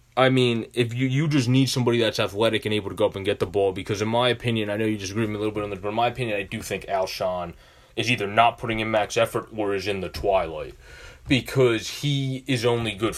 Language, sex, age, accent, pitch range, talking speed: English, male, 20-39, American, 100-125 Hz, 270 wpm